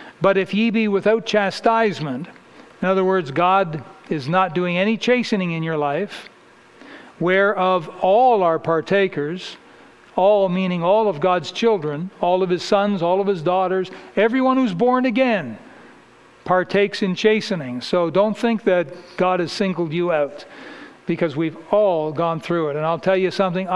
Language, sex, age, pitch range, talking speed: English, male, 60-79, 160-200 Hz, 160 wpm